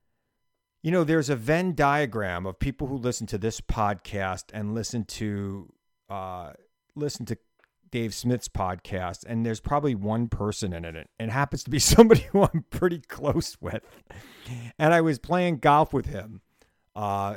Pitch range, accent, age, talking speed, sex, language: 100-145 Hz, American, 50-69, 160 wpm, male, English